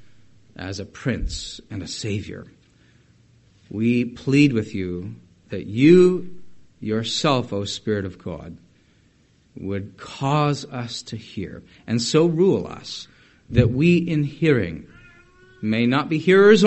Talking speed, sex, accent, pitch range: 120 wpm, male, American, 95-140 Hz